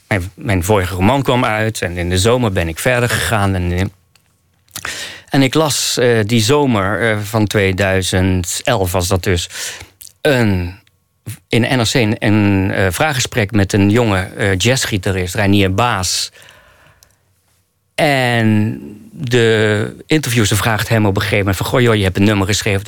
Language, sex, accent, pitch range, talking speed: Dutch, male, Dutch, 95-120 Hz, 145 wpm